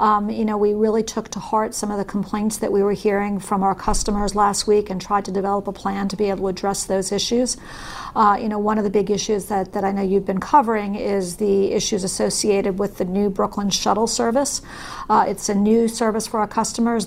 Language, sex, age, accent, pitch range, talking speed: English, female, 50-69, American, 200-220 Hz, 235 wpm